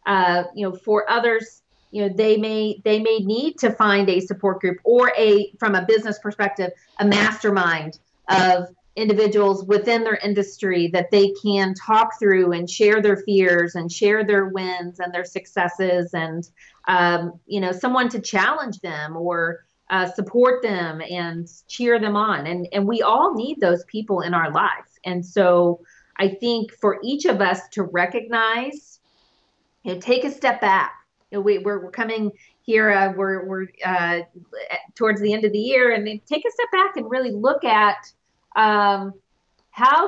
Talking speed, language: 175 wpm, English